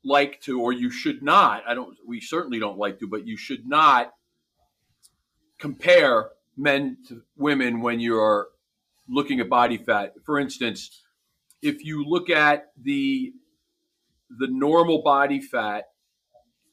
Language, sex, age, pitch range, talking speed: English, male, 40-59, 125-180 Hz, 135 wpm